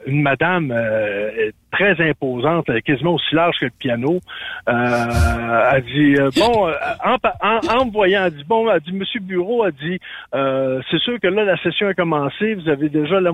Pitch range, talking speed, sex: 145-195 Hz, 205 wpm, male